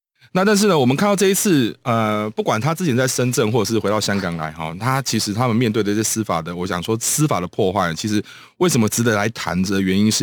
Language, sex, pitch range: Chinese, male, 95-130 Hz